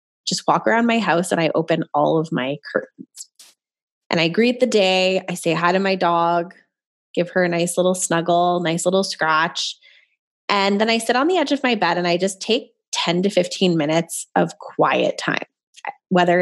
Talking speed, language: 195 wpm, English